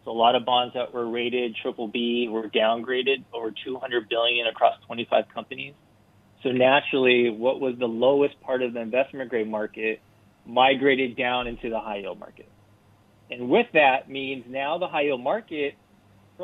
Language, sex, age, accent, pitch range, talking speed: English, male, 30-49, American, 115-155 Hz, 170 wpm